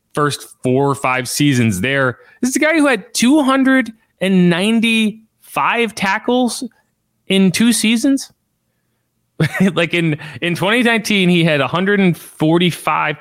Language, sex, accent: English, male, American